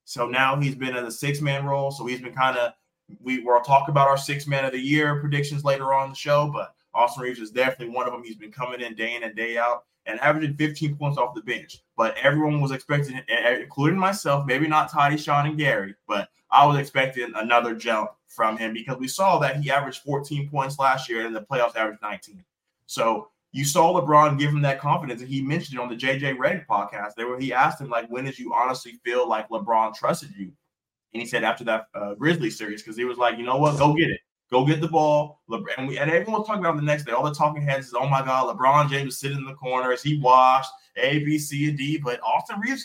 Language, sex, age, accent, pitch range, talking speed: English, male, 20-39, American, 125-150 Hz, 250 wpm